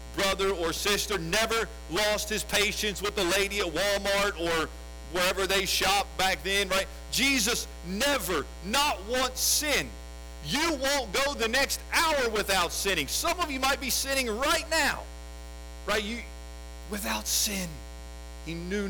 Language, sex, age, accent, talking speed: English, male, 50-69, American, 145 wpm